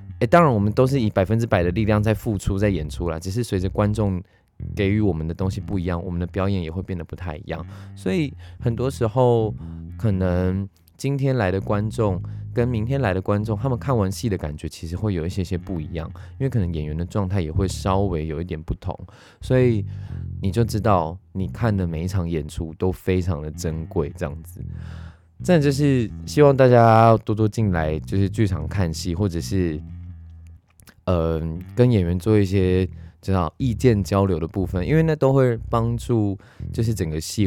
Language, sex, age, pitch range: Chinese, male, 20-39, 85-110 Hz